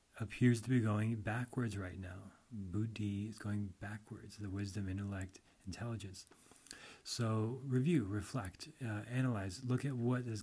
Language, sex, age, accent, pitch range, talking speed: English, male, 30-49, American, 100-120 Hz, 140 wpm